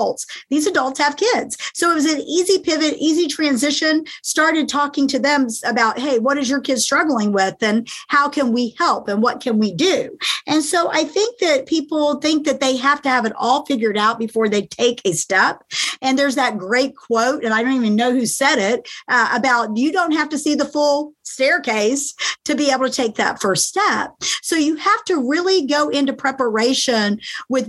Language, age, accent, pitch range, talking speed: English, 50-69, American, 245-315 Hz, 205 wpm